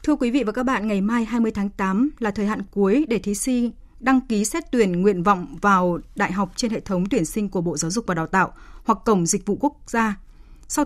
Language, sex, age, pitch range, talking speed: Vietnamese, female, 20-39, 190-245 Hz, 255 wpm